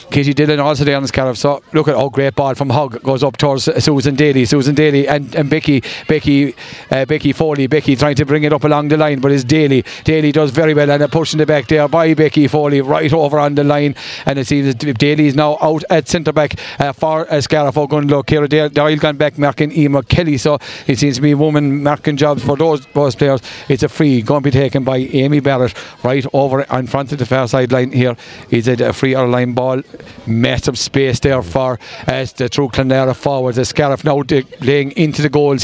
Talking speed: 235 wpm